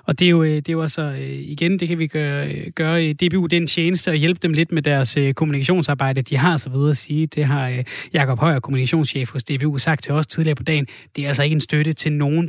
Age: 20-39